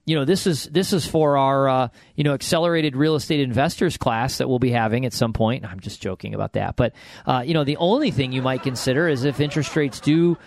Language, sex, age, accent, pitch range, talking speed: English, male, 40-59, American, 125-150 Hz, 245 wpm